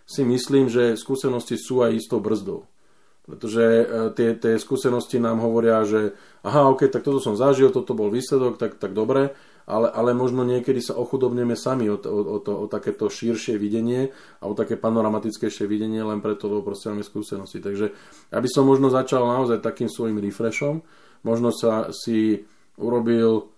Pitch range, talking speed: 105-120 Hz, 175 wpm